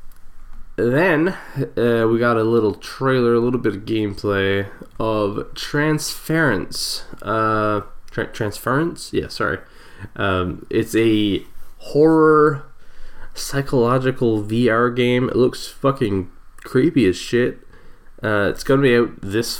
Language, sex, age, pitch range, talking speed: English, male, 20-39, 95-125 Hz, 115 wpm